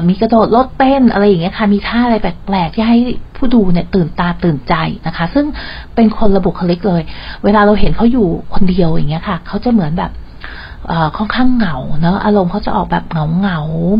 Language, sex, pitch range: Thai, female, 170-215 Hz